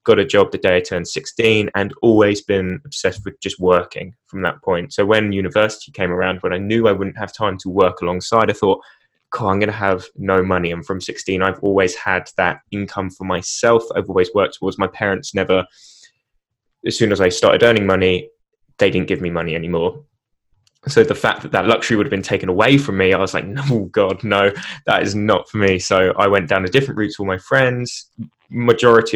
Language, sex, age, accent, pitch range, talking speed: English, male, 10-29, British, 95-130 Hz, 220 wpm